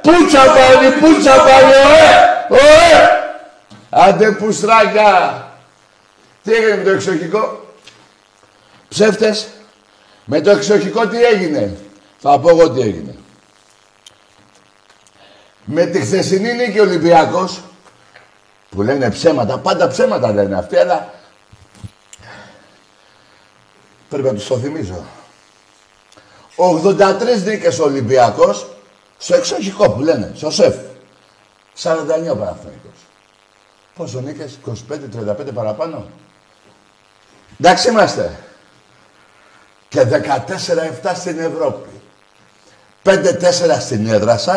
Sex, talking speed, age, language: male, 85 wpm, 60-79, Greek